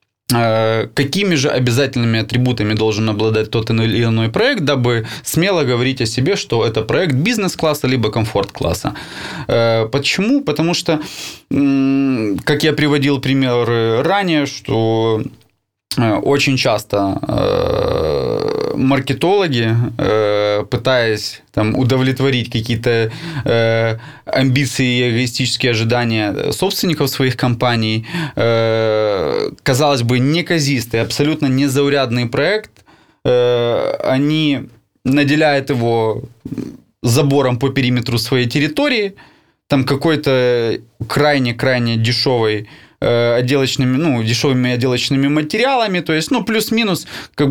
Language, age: Russian, 20-39